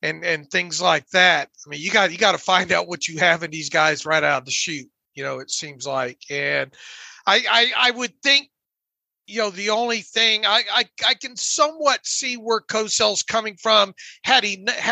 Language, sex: English, male